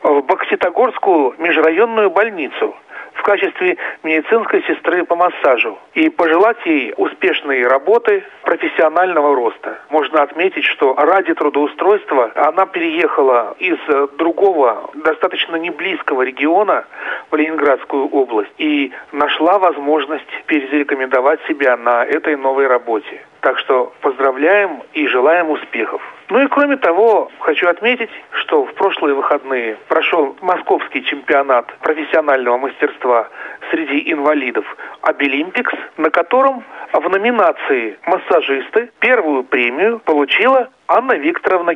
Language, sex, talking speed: Russian, male, 110 wpm